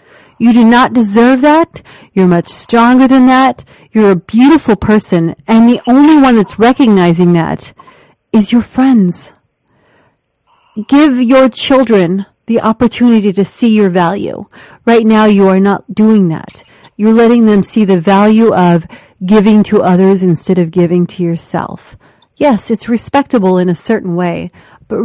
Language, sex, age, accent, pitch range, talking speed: English, female, 40-59, American, 190-235 Hz, 150 wpm